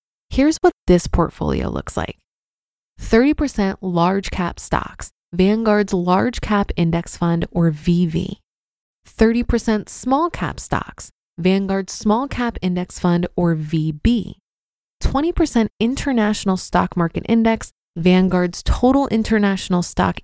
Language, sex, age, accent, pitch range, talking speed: English, female, 20-39, American, 180-230 Hz, 110 wpm